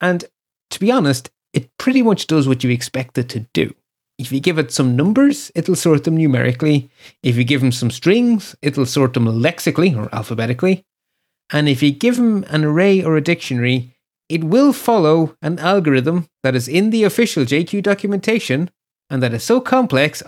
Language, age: English, 30-49